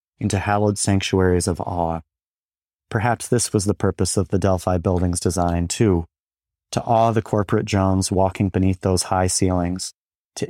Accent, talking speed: American, 155 wpm